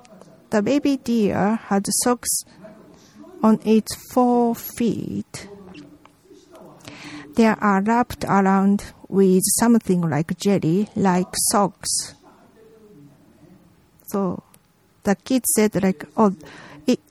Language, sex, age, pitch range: Japanese, female, 50-69, 180-225 Hz